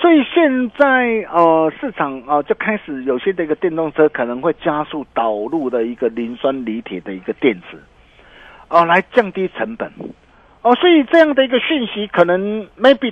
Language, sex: Chinese, male